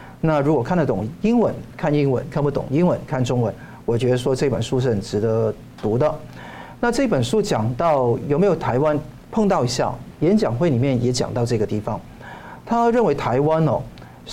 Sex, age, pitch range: male, 50-69, 125-190 Hz